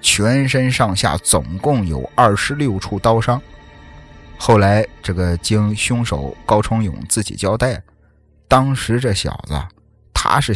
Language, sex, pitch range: Chinese, male, 90-130 Hz